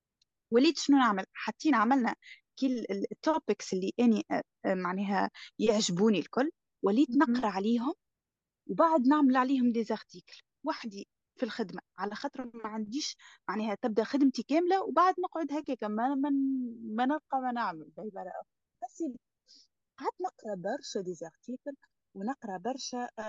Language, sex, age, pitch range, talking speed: Arabic, female, 20-39, 215-275 Hz, 120 wpm